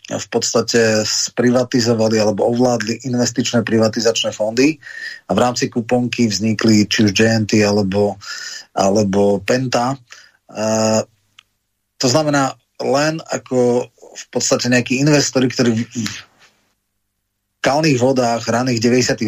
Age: 30-49